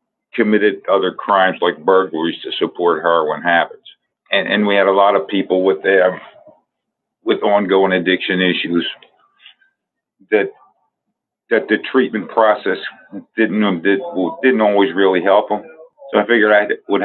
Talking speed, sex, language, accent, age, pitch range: 135 wpm, male, English, American, 50-69, 95-110 Hz